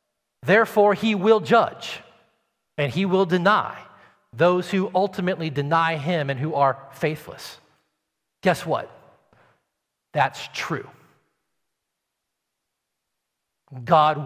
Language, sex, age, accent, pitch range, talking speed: English, male, 40-59, American, 130-190 Hz, 95 wpm